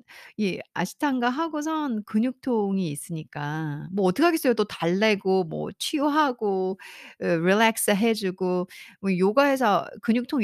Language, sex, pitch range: Korean, female, 165-250 Hz